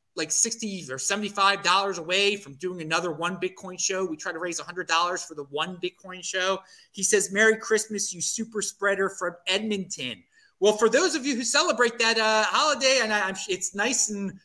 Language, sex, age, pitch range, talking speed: English, male, 30-49, 160-210 Hz, 200 wpm